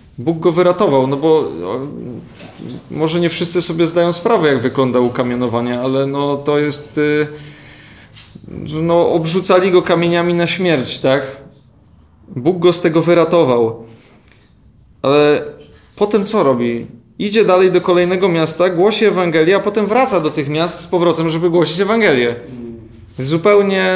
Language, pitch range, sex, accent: Polish, 130-175 Hz, male, native